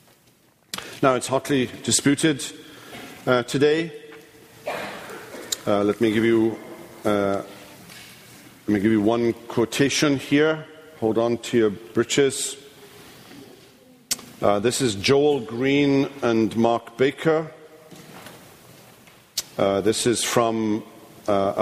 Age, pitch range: 50-69, 110-140 Hz